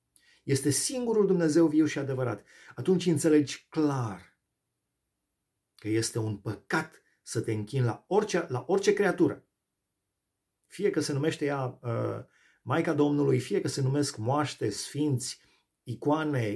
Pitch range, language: 115-160 Hz, Romanian